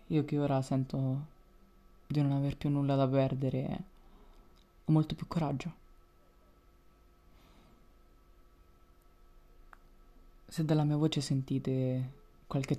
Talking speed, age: 100 wpm, 20-39